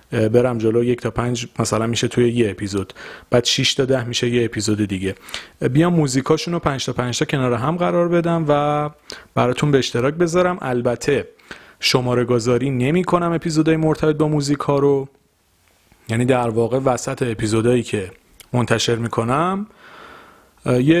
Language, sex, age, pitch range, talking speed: Persian, male, 30-49, 115-155 Hz, 150 wpm